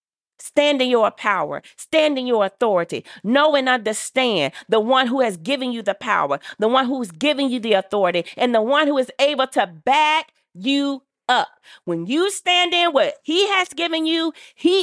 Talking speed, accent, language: 185 wpm, American, English